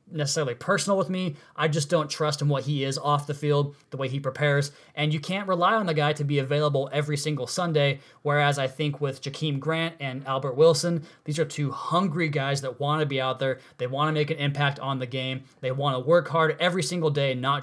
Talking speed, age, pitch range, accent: 240 wpm, 20-39, 135-165 Hz, American